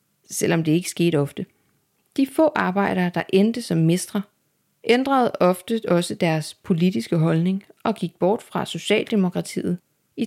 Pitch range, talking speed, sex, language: 165-210 Hz, 140 wpm, female, Danish